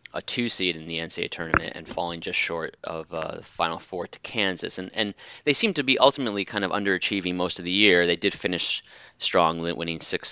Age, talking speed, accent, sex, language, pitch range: 20-39, 220 wpm, American, male, English, 85-110 Hz